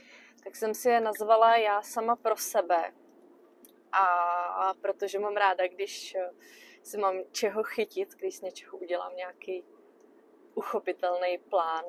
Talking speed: 125 wpm